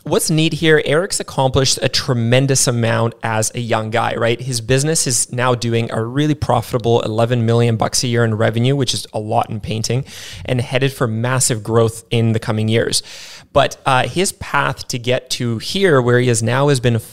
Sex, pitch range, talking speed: male, 115-135 Hz, 200 wpm